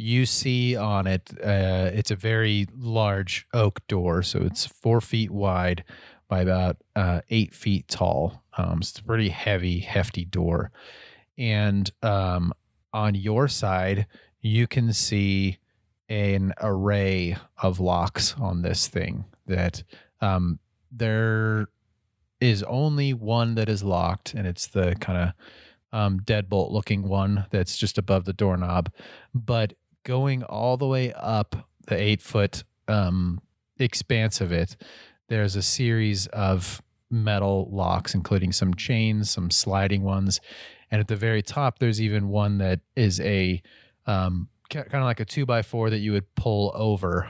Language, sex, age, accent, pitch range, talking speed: English, male, 30-49, American, 95-110 Hz, 145 wpm